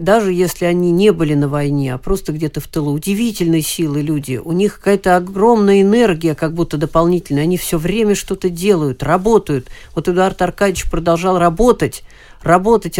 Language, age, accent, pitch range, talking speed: Russian, 40-59, native, 155-185 Hz, 160 wpm